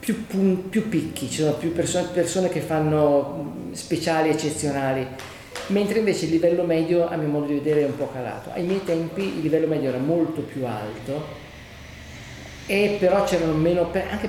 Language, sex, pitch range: Italian, male, 125-160 Hz